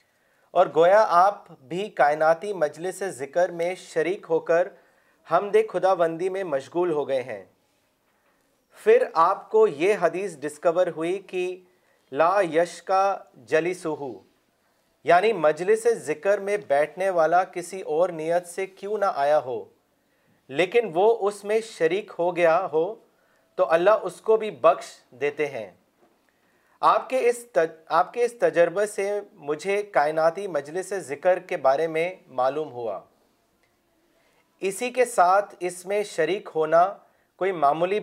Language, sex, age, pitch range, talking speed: Urdu, male, 40-59, 165-205 Hz, 135 wpm